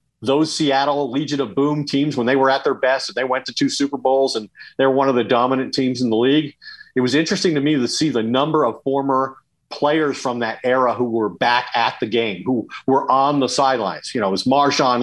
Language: English